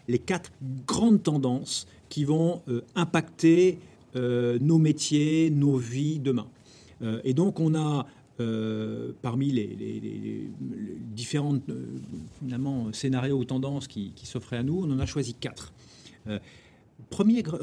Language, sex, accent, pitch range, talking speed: French, male, French, 115-145 Hz, 145 wpm